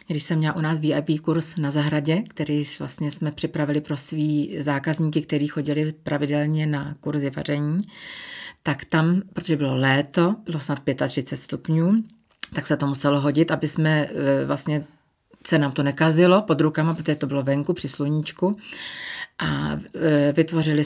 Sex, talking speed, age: female, 150 wpm, 40-59